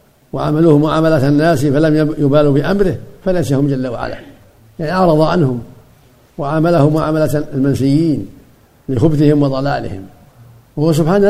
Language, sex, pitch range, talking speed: Arabic, male, 125-155 Hz, 100 wpm